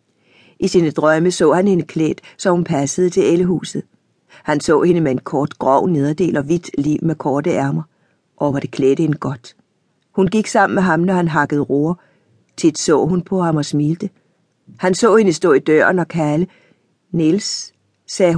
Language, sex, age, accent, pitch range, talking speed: Danish, female, 60-79, native, 150-185 Hz, 190 wpm